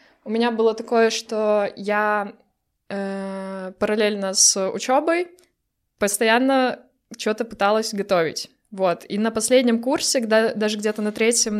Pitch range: 195-230 Hz